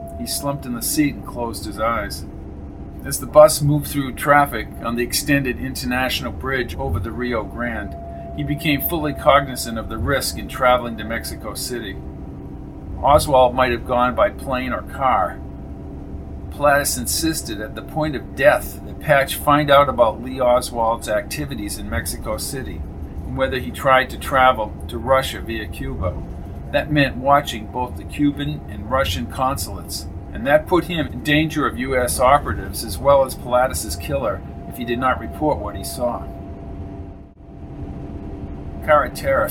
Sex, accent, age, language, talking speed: male, American, 50-69, English, 160 wpm